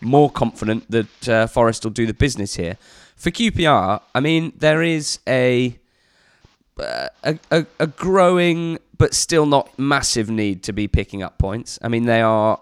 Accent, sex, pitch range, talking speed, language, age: British, male, 105-130 Hz, 155 wpm, English, 20-39